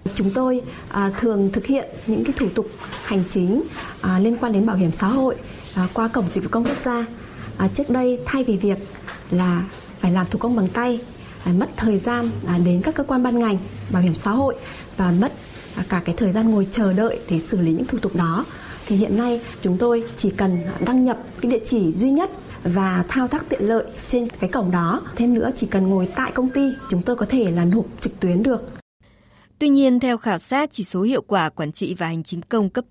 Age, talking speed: 20-39, 225 wpm